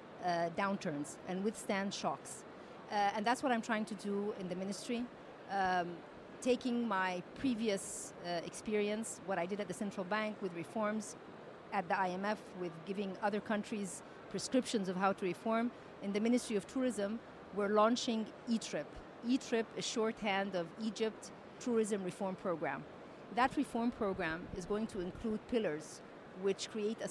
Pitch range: 185-225 Hz